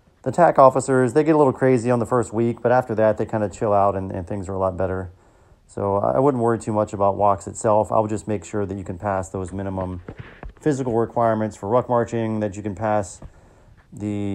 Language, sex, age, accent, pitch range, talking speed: English, male, 30-49, American, 100-120 Hz, 230 wpm